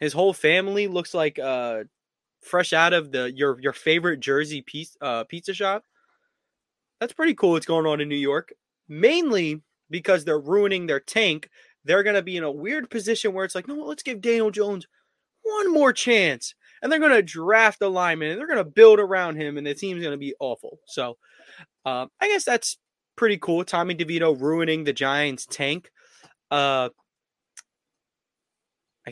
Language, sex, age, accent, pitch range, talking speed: English, male, 20-39, American, 140-195 Hz, 175 wpm